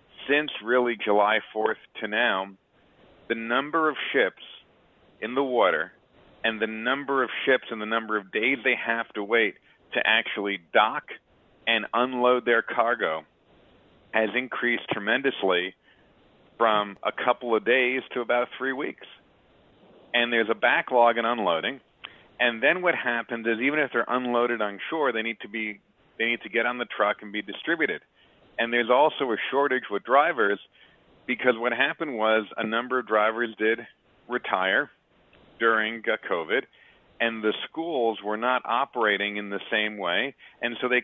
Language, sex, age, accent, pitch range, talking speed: English, male, 40-59, American, 105-125 Hz, 155 wpm